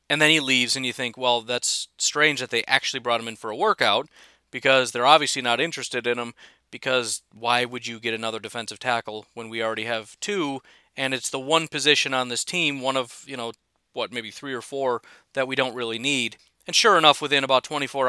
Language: English